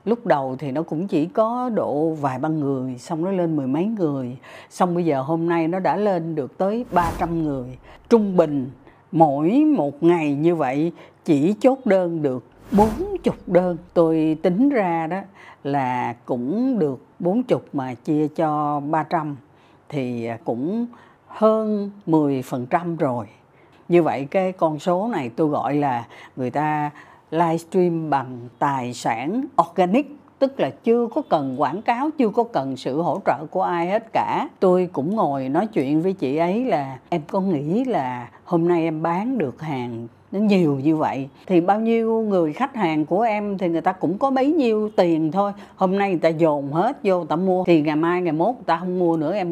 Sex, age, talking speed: female, 60-79, 190 wpm